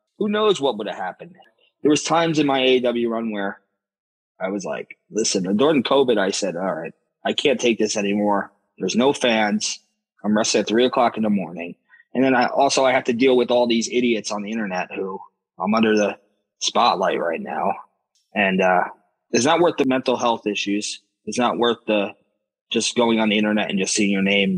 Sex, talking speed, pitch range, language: male, 210 wpm, 100-125 Hz, English